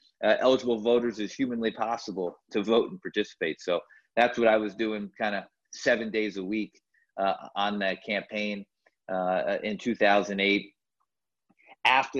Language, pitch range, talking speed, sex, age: English, 90-110 Hz, 150 wpm, male, 30-49